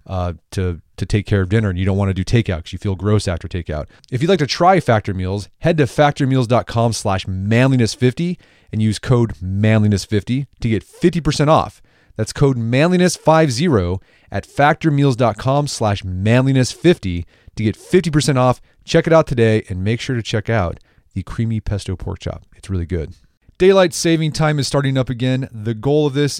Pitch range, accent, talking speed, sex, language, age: 100-145 Hz, American, 180 wpm, male, English, 30-49